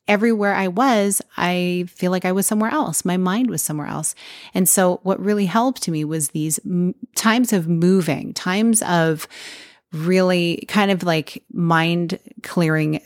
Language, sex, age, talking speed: English, female, 30-49, 155 wpm